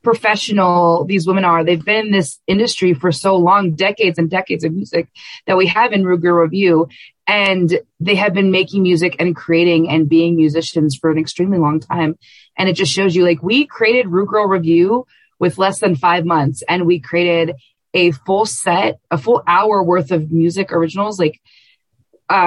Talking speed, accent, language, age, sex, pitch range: 185 wpm, American, English, 20-39, female, 155-190 Hz